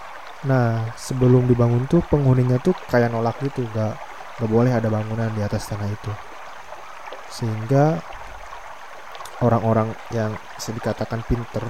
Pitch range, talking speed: 115-135 Hz, 115 wpm